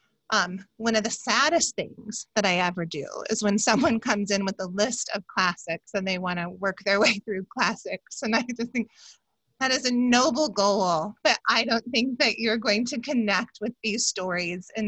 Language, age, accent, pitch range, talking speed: English, 30-49, American, 200-250 Hz, 200 wpm